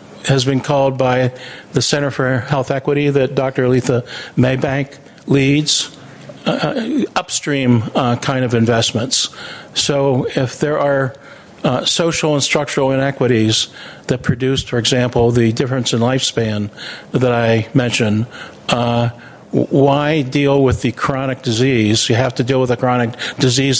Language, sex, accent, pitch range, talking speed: English, male, American, 120-140 Hz, 140 wpm